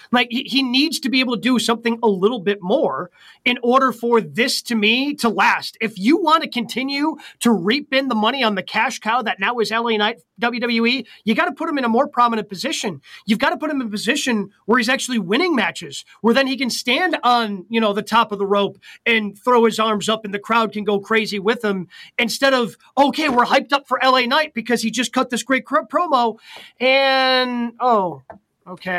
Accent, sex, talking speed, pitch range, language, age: American, male, 230 wpm, 215-265 Hz, English, 30-49